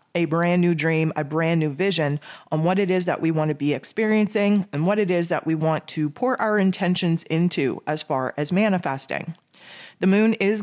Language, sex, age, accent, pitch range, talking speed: English, female, 20-39, American, 155-195 Hz, 210 wpm